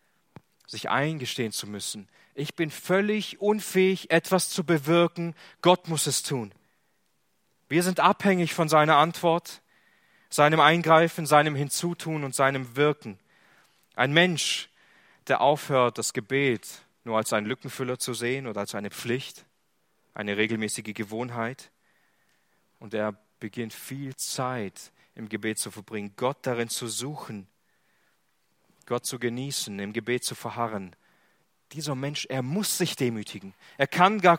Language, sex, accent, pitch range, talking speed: German, male, German, 120-175 Hz, 135 wpm